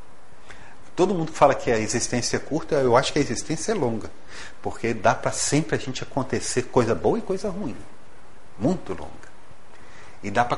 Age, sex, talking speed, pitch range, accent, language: 50-69, male, 185 wpm, 120-170 Hz, Brazilian, Portuguese